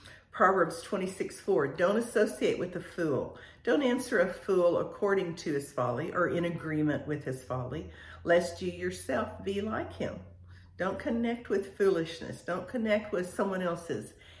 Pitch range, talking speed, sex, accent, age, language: 150-200 Hz, 150 wpm, female, American, 50-69, English